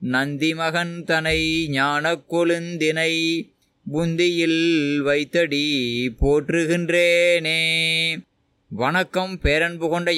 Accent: native